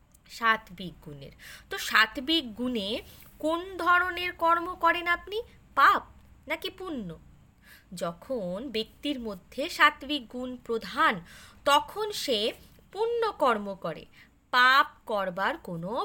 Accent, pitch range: native, 225-340 Hz